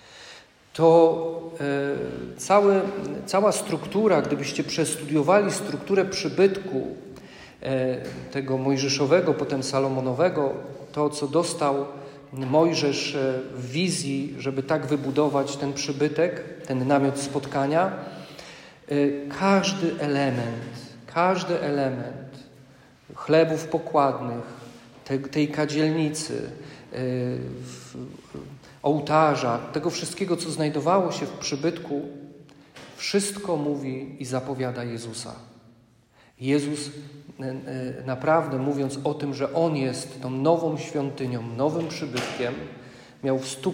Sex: male